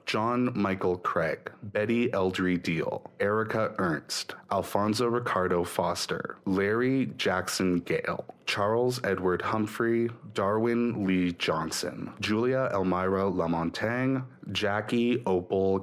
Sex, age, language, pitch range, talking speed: male, 30-49, English, 90-105 Hz, 95 wpm